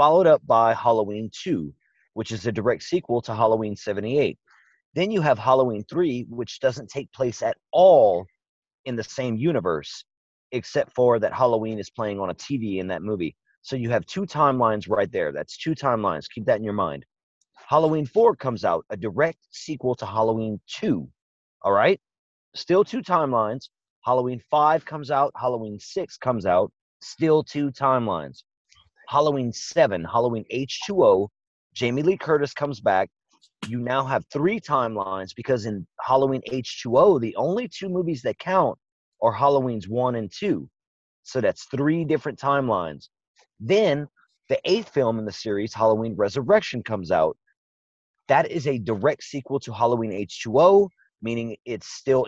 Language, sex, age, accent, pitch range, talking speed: English, male, 30-49, American, 110-145 Hz, 155 wpm